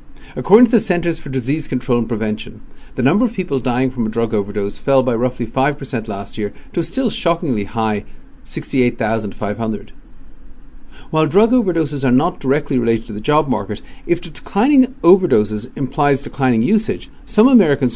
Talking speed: 165 wpm